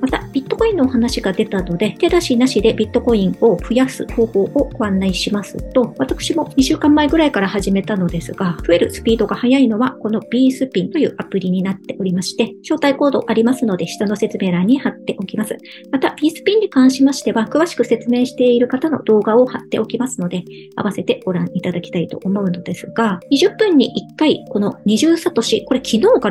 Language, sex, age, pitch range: Japanese, male, 50-69, 195-265 Hz